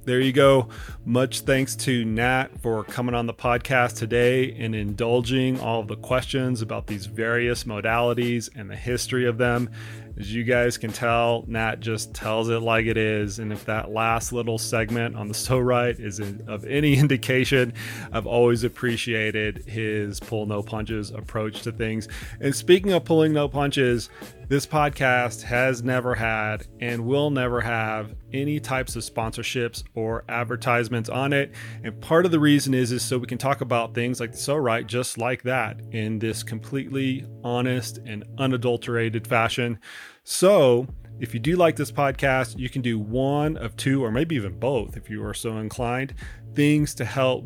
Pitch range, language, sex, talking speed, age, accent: 110-130 Hz, English, male, 175 wpm, 30-49, American